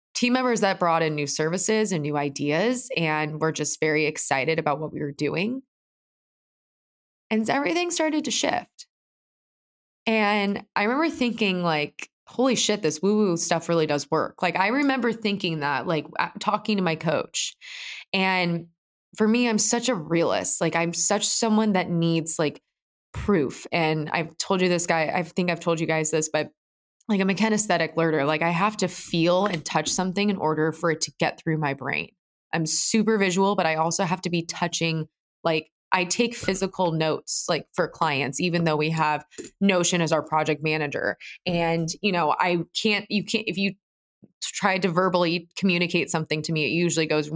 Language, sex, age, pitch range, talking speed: English, female, 20-39, 155-205 Hz, 185 wpm